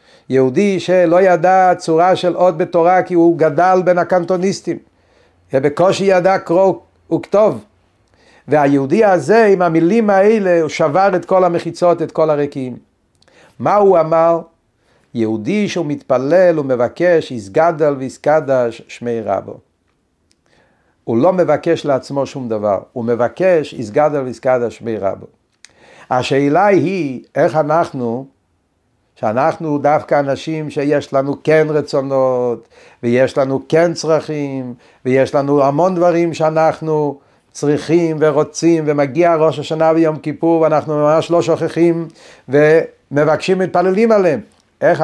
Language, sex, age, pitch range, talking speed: Hebrew, male, 50-69, 130-170 Hz, 120 wpm